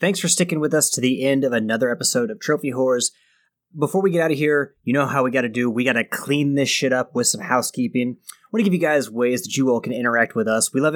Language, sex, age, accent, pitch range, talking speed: English, male, 20-39, American, 120-150 Hz, 290 wpm